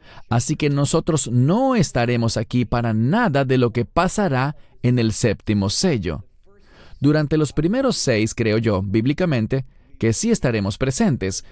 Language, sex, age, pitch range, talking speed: English, male, 30-49, 95-130 Hz, 140 wpm